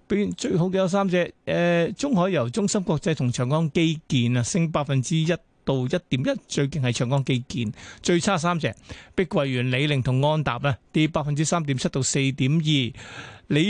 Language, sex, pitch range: Chinese, male, 140-180 Hz